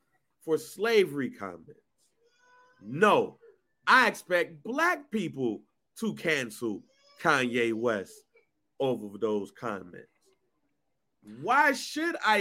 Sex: male